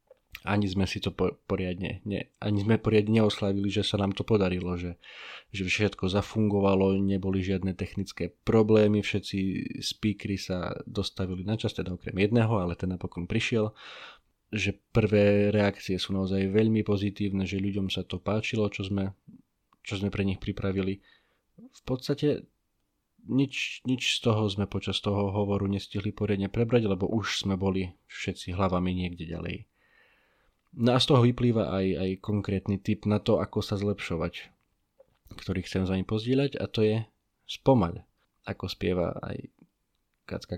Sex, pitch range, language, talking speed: male, 95-110 Hz, Slovak, 155 wpm